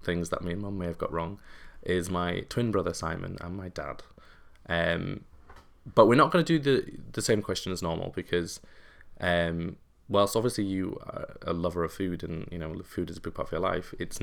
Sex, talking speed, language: male, 215 wpm, English